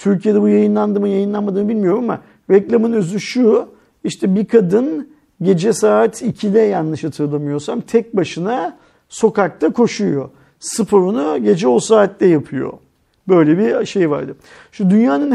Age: 50-69